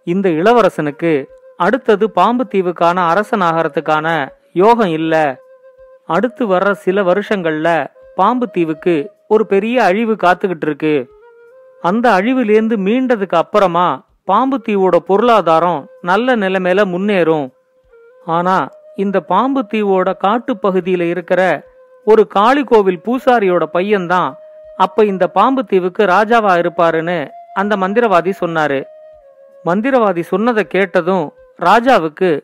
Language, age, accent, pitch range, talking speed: Tamil, 40-59, native, 180-245 Hz, 90 wpm